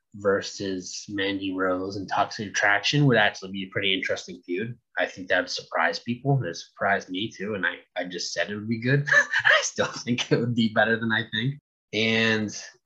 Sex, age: male, 20-39